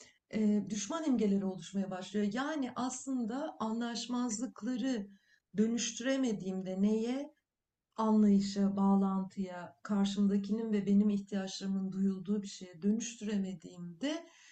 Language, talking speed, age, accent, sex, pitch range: Turkish, 85 wpm, 60-79, native, female, 200-255 Hz